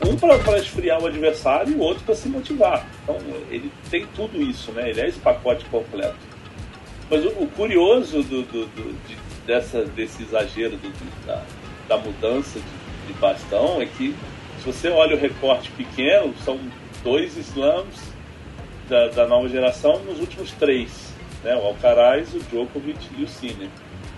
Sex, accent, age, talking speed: male, Brazilian, 40-59, 165 wpm